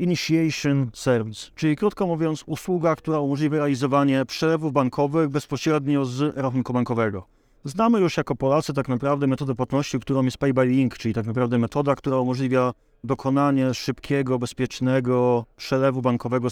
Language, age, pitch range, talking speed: Polish, 30-49, 125-150 Hz, 135 wpm